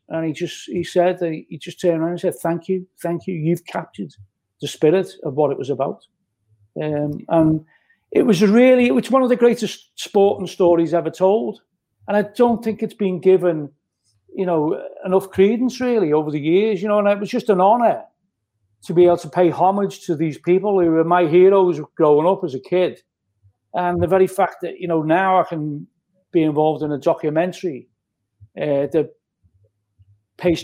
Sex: male